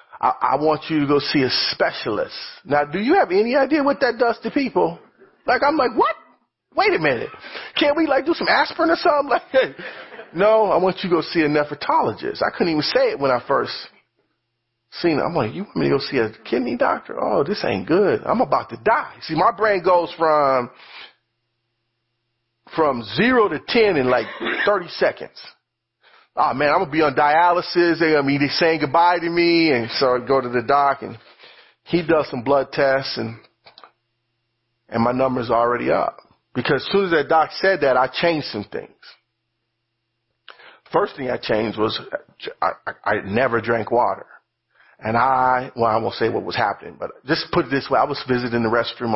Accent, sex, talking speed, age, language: American, male, 200 wpm, 40-59, English